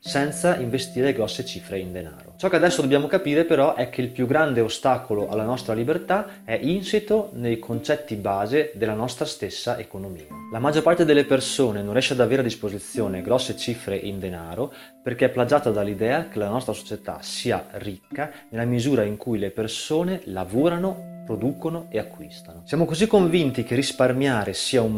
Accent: native